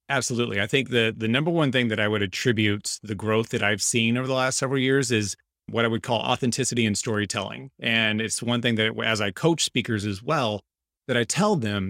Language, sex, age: English, male, 30-49